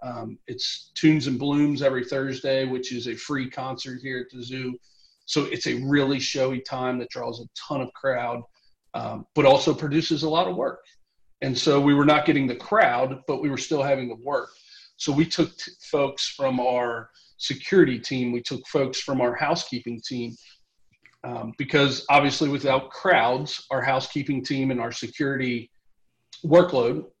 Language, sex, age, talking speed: English, male, 40-59, 170 wpm